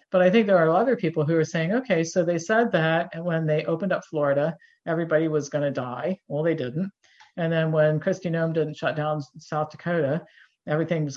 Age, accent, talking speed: 50-69, American, 210 wpm